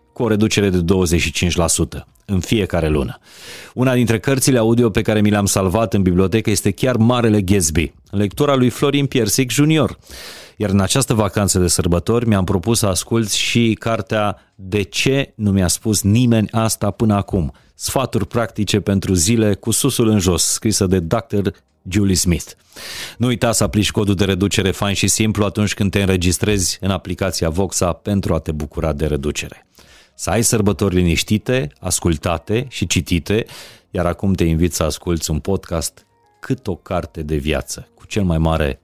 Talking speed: 170 wpm